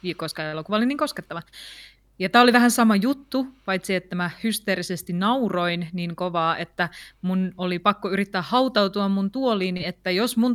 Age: 20-39